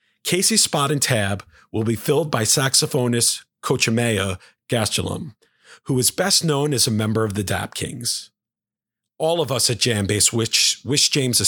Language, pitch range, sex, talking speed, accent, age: English, 105-150 Hz, male, 160 wpm, American, 40-59